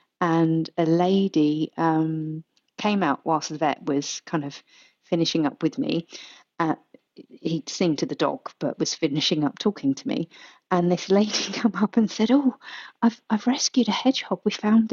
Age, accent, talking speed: 40-59, British, 175 wpm